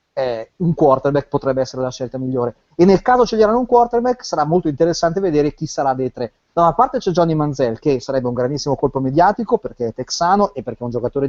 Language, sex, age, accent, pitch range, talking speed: Italian, male, 30-49, native, 140-175 Hz, 225 wpm